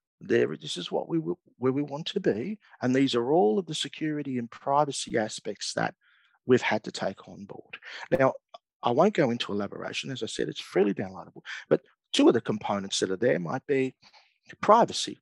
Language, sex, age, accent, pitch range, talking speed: English, male, 50-69, Australian, 125-150 Hz, 195 wpm